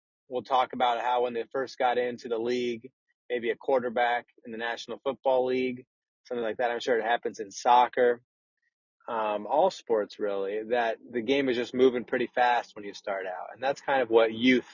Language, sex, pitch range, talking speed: English, male, 120-140 Hz, 205 wpm